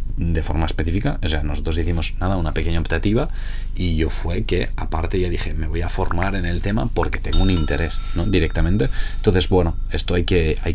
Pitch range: 80-90 Hz